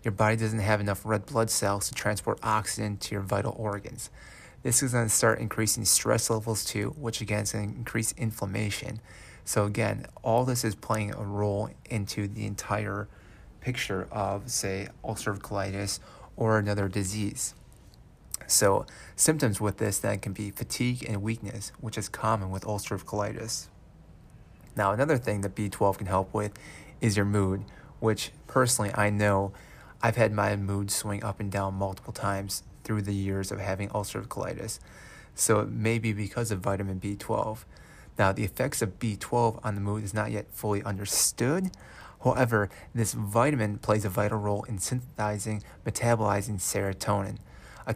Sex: male